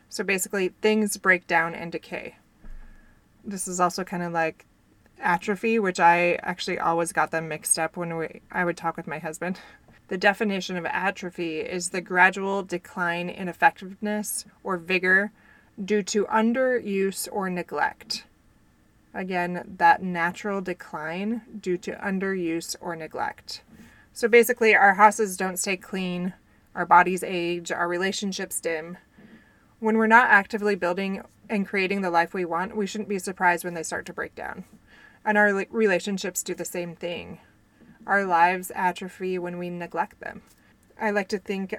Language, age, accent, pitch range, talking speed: English, 20-39, American, 175-200 Hz, 155 wpm